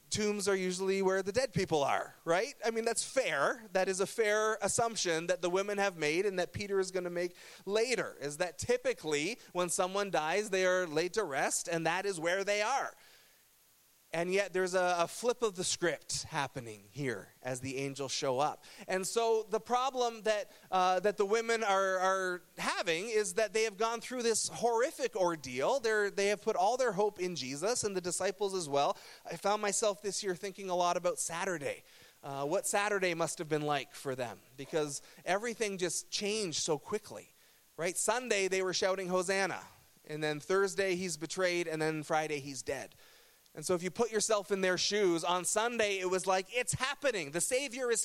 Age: 30-49